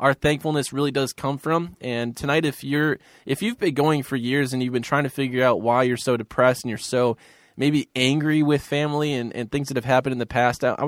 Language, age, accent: English, 20-39, American